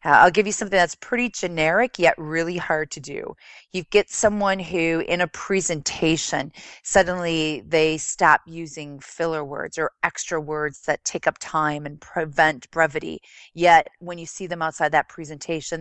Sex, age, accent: female, 30-49, American